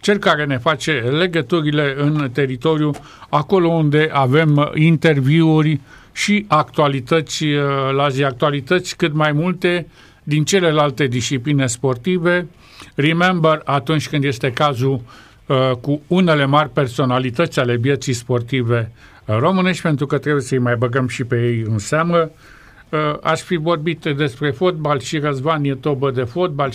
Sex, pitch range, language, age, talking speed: male, 140-170 Hz, Romanian, 50-69, 130 wpm